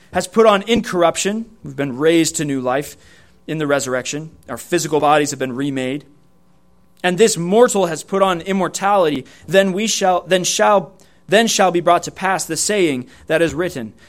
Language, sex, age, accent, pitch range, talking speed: English, male, 30-49, American, 110-175 Hz, 180 wpm